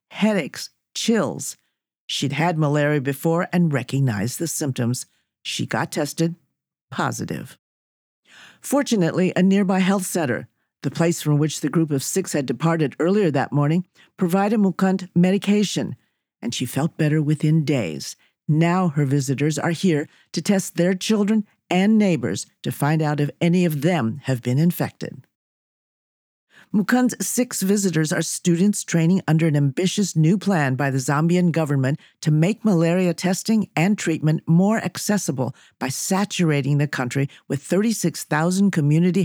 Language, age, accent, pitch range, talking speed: English, 50-69, American, 145-185 Hz, 140 wpm